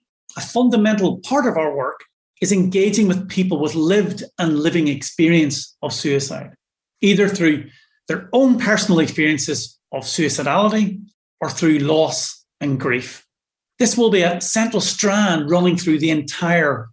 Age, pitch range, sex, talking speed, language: 40-59, 150-190 Hz, male, 140 wpm, English